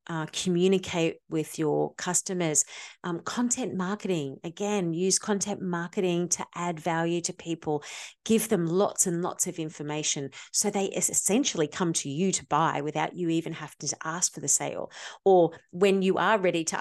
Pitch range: 155-195 Hz